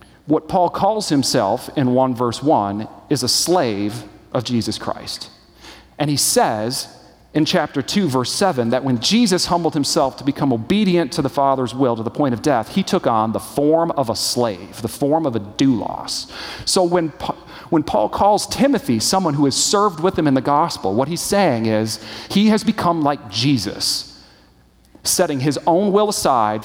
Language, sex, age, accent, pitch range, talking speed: English, male, 40-59, American, 115-165 Hz, 185 wpm